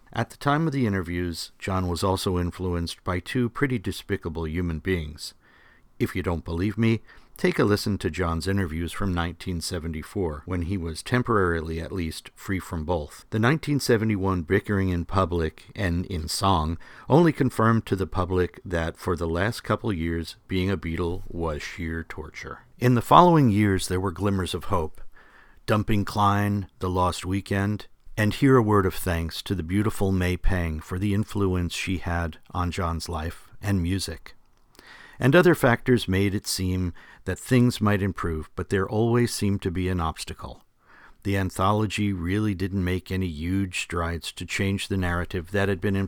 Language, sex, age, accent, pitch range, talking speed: English, male, 50-69, American, 90-105 Hz, 170 wpm